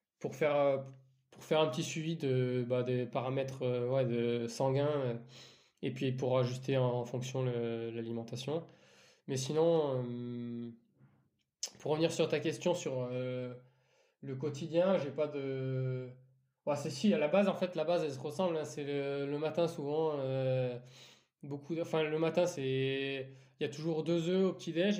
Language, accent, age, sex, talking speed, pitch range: French, French, 20-39, male, 180 wpm, 130-165 Hz